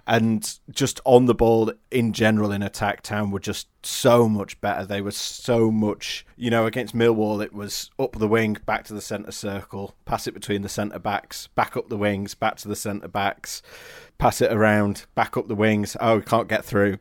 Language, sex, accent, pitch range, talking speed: English, male, British, 105-110 Hz, 210 wpm